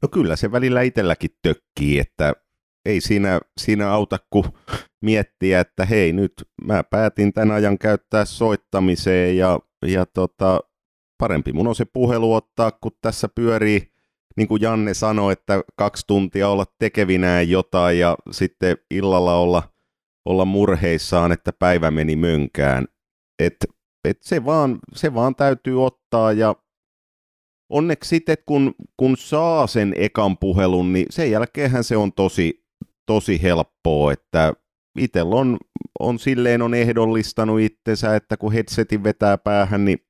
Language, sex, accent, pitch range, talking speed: Finnish, male, native, 90-115 Hz, 140 wpm